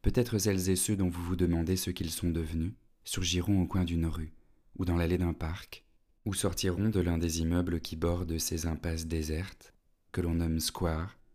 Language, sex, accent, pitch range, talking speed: French, male, French, 85-95 Hz, 195 wpm